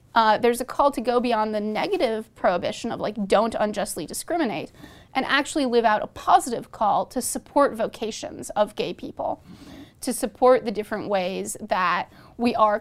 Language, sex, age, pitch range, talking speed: English, female, 30-49, 210-265 Hz, 170 wpm